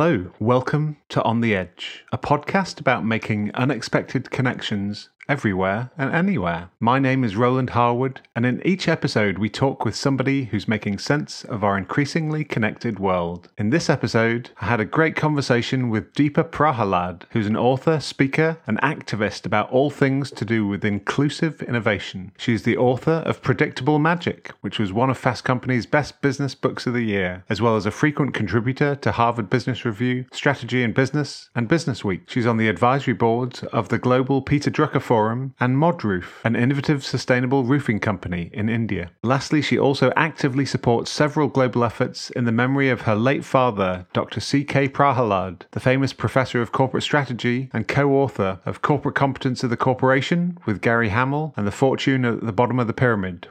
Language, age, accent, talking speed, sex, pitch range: English, 30-49, British, 180 wpm, male, 110-140 Hz